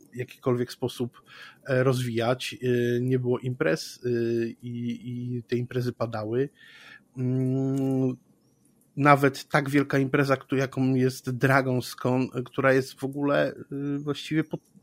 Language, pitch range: Polish, 125-145 Hz